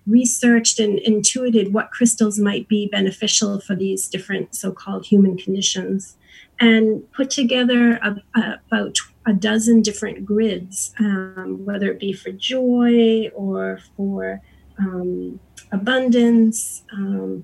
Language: English